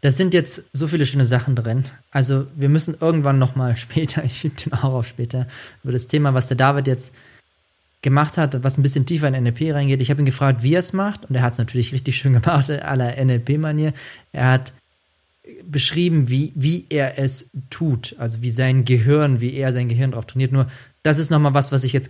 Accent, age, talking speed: German, 20-39, 215 wpm